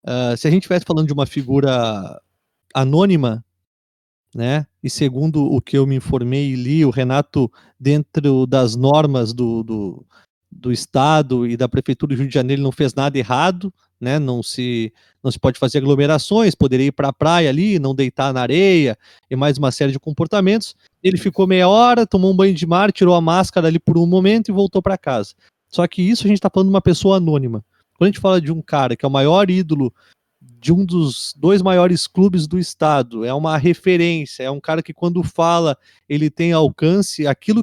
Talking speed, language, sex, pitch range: 205 wpm, Portuguese, male, 135-180 Hz